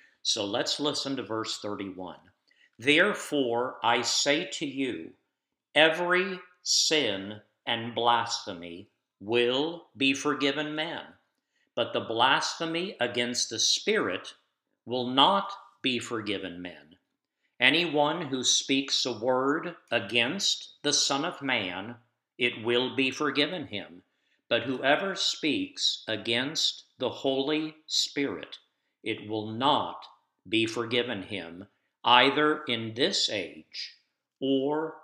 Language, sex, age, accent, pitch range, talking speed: English, male, 50-69, American, 115-155 Hz, 110 wpm